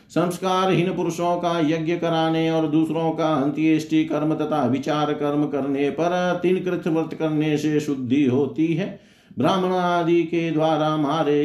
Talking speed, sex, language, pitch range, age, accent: 150 wpm, male, Hindi, 135-165 Hz, 50-69, native